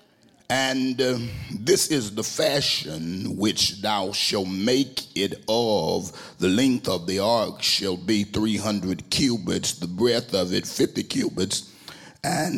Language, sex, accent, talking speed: English, male, American, 135 wpm